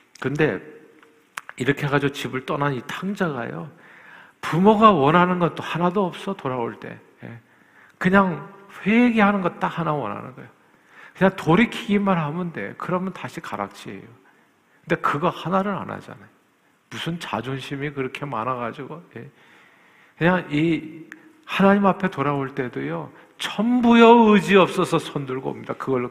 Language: Korean